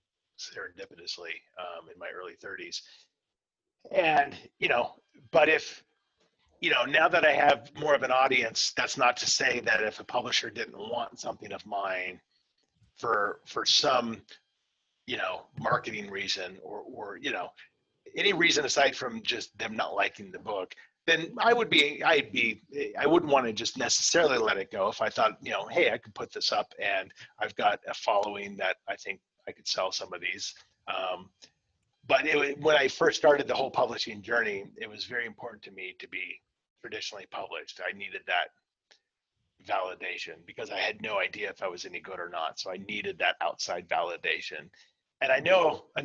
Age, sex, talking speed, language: 40-59, male, 185 wpm, English